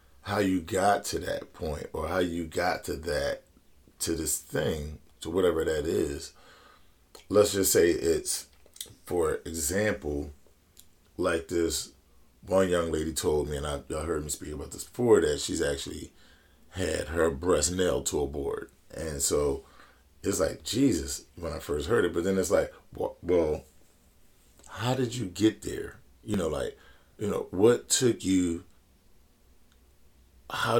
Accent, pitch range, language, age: American, 80-115 Hz, English, 40-59